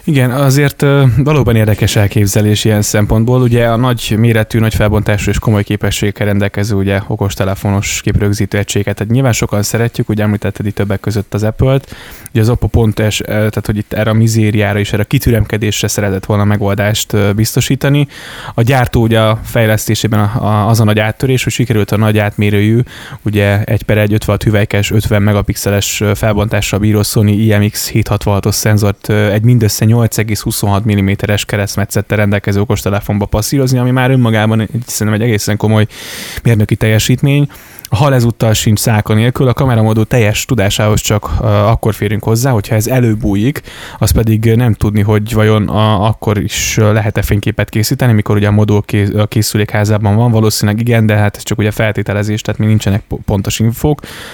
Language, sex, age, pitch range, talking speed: Hungarian, male, 20-39, 105-115 Hz, 155 wpm